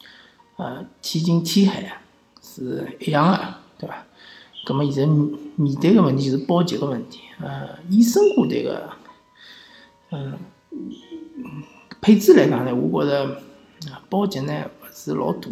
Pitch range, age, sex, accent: 150-235 Hz, 50-69, male, native